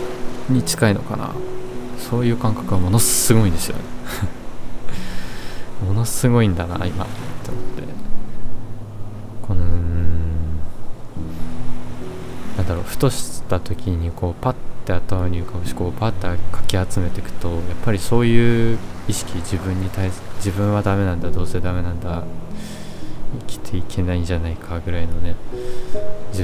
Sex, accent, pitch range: male, native, 90-115 Hz